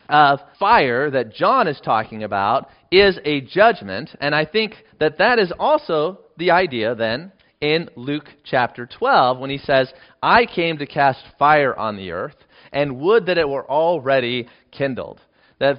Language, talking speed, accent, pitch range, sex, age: English, 165 wpm, American, 130-175 Hz, male, 30-49